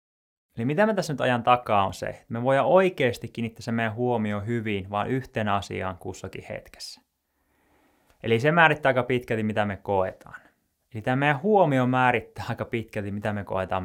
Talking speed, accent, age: 180 wpm, native, 20-39